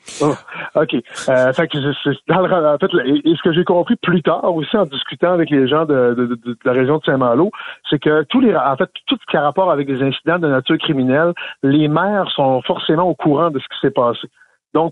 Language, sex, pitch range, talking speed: French, male, 135-170 Hz, 245 wpm